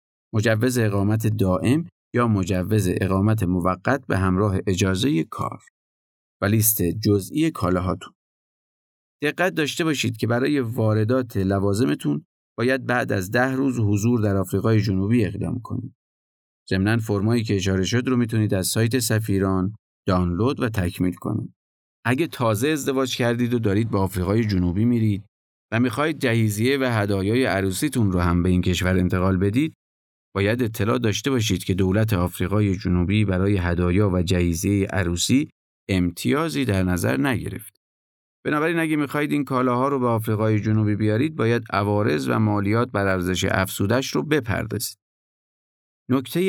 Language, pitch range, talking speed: Persian, 95-125 Hz, 140 wpm